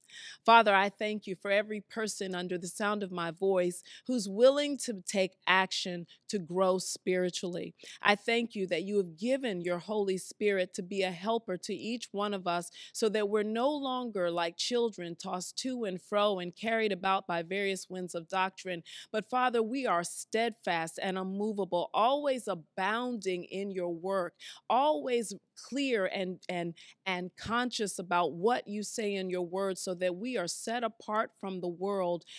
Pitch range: 180-220 Hz